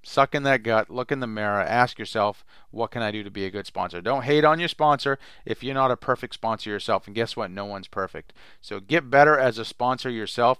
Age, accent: 40-59, American